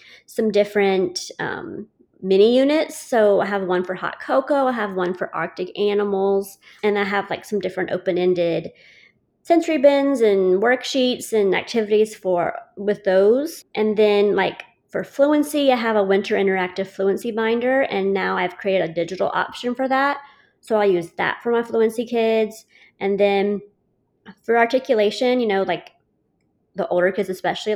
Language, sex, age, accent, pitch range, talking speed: English, female, 30-49, American, 190-235 Hz, 160 wpm